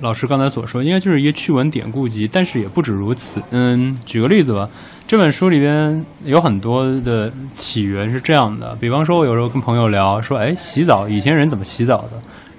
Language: Chinese